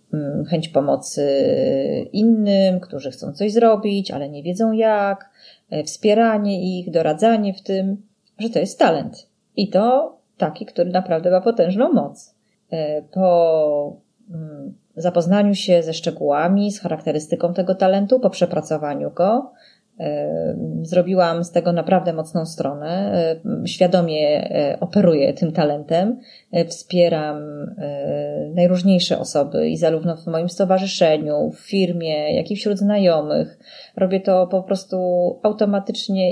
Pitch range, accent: 160-195 Hz, native